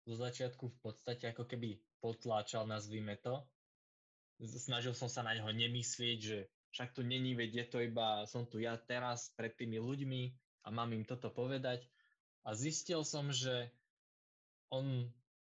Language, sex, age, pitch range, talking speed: Slovak, male, 20-39, 110-135 Hz, 155 wpm